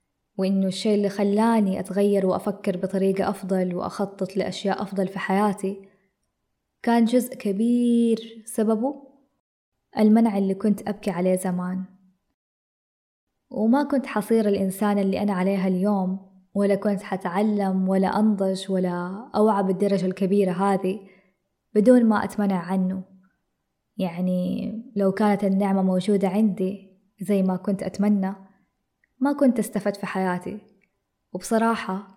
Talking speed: 115 wpm